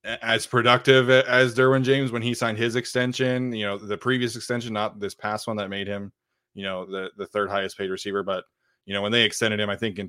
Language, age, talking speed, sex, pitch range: English, 20-39, 240 wpm, male, 100-120 Hz